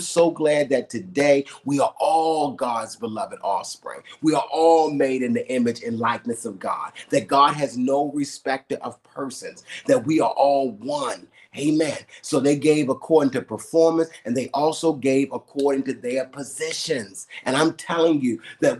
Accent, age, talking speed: American, 30-49, 170 wpm